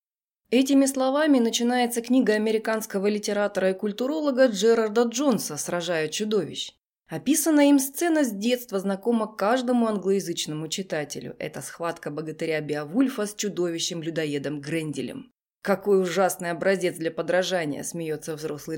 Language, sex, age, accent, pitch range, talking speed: Russian, female, 20-39, native, 175-250 Hz, 110 wpm